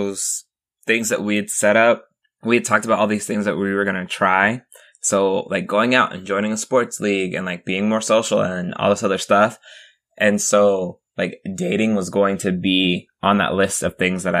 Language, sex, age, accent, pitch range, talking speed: English, male, 20-39, American, 95-115 Hz, 210 wpm